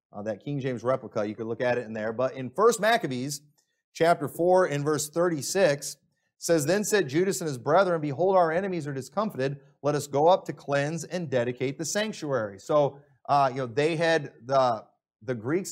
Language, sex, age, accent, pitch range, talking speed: English, male, 30-49, American, 135-175 Hz, 200 wpm